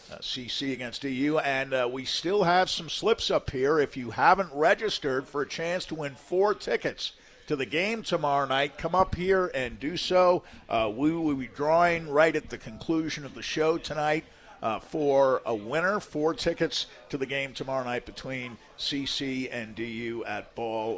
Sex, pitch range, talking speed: male, 130-165 Hz, 185 wpm